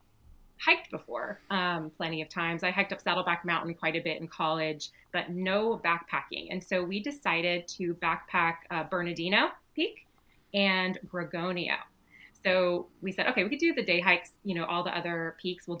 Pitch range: 170-205 Hz